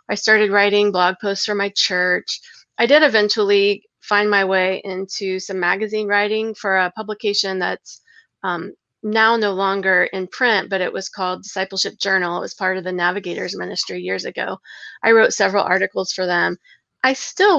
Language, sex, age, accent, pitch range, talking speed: English, female, 30-49, American, 190-245 Hz, 175 wpm